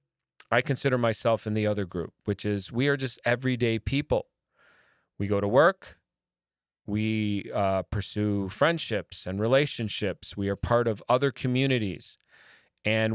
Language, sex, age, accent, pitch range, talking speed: English, male, 30-49, American, 105-130 Hz, 140 wpm